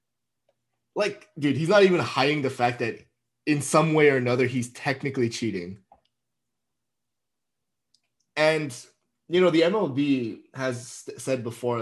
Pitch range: 110-135 Hz